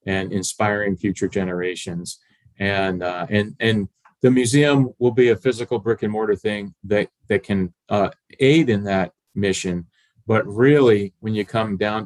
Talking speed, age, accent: 160 wpm, 40-59, American